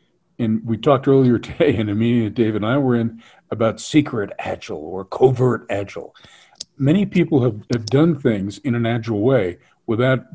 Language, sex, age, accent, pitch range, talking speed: English, male, 50-69, American, 115-140 Hz, 175 wpm